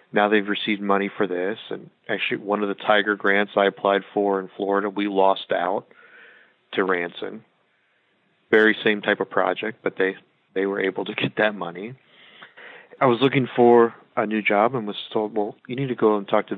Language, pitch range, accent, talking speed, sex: English, 100-115 Hz, American, 200 wpm, male